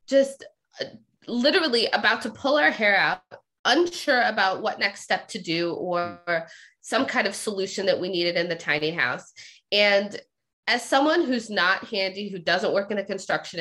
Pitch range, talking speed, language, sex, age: 185-265 Hz, 170 wpm, English, female, 20-39